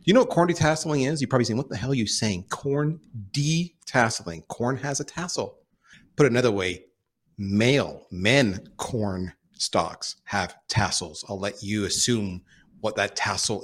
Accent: American